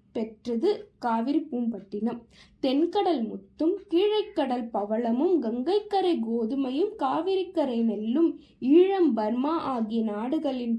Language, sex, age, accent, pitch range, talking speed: Tamil, female, 20-39, native, 235-330 Hz, 85 wpm